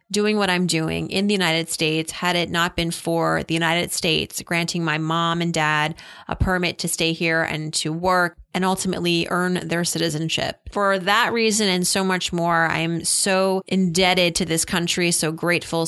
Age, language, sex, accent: 30-49, English, female, American